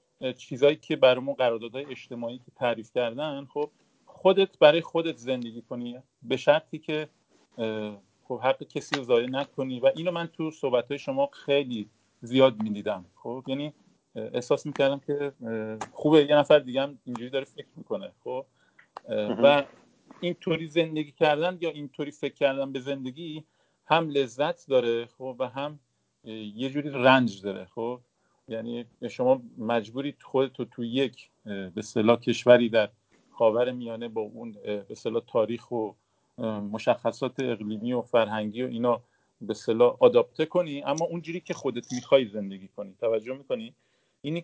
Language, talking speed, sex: Persian, 140 wpm, male